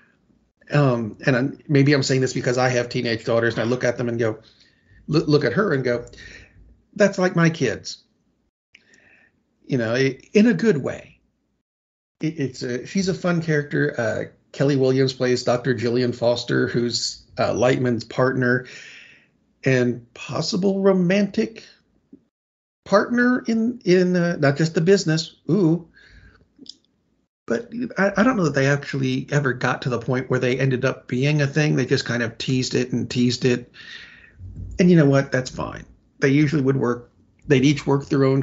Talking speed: 170 wpm